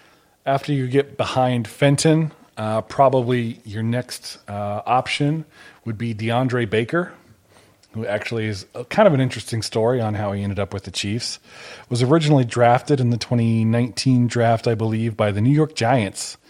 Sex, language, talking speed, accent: male, English, 165 wpm, American